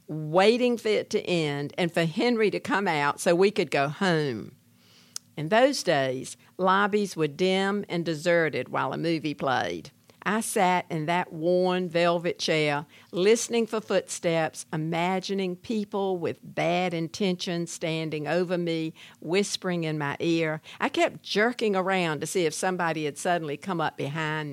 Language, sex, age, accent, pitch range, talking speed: English, female, 60-79, American, 155-205 Hz, 155 wpm